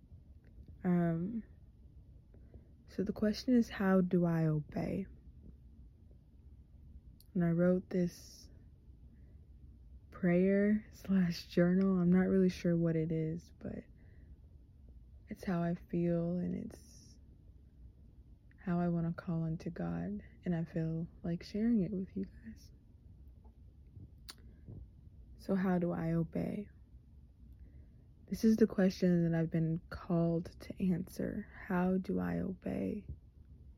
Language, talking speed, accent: English, 115 wpm, American